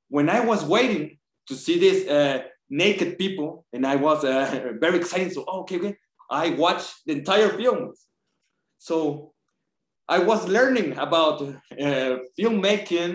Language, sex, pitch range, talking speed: English, male, 130-190 Hz, 145 wpm